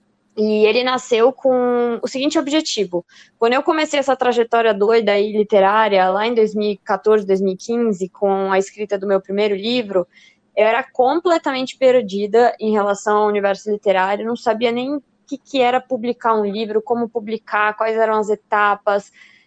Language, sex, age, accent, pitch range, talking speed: Portuguese, female, 20-39, Brazilian, 210-255 Hz, 155 wpm